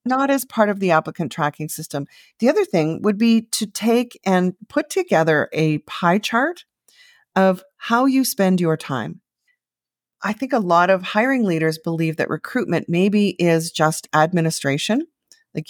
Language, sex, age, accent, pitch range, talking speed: English, female, 40-59, American, 160-225 Hz, 160 wpm